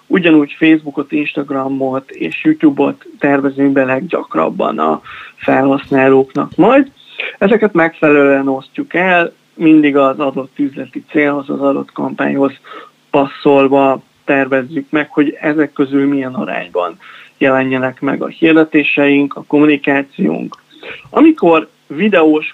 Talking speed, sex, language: 105 wpm, male, Hungarian